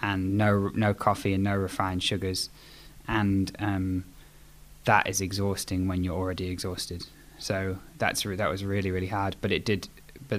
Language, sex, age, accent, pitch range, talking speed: English, male, 10-29, British, 95-105 Hz, 170 wpm